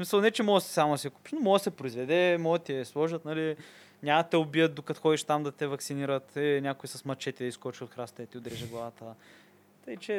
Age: 20-39